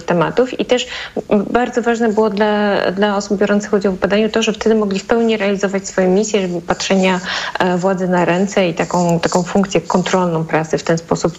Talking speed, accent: 190 wpm, native